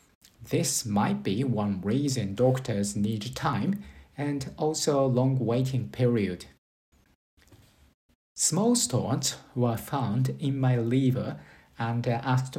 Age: 50-69